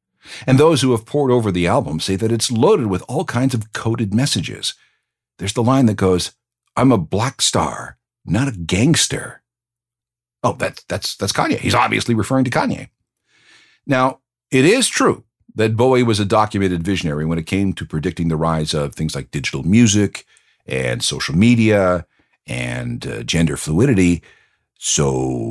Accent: American